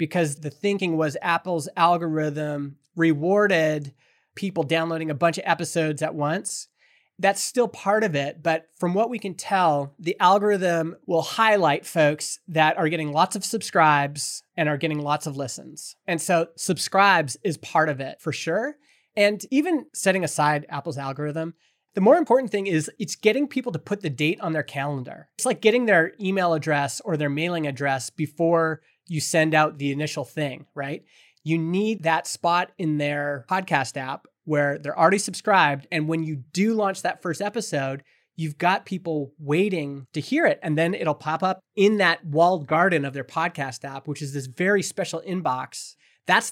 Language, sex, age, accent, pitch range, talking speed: English, male, 30-49, American, 150-190 Hz, 180 wpm